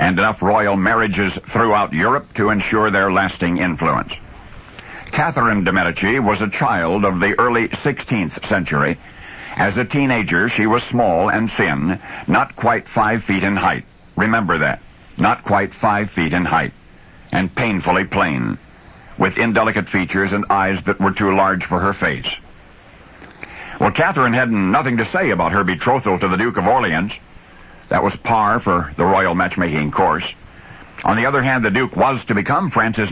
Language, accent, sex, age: English, American, male, 60-79